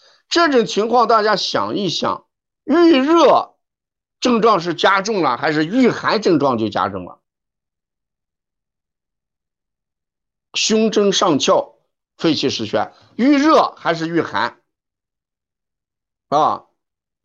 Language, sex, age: Chinese, male, 50-69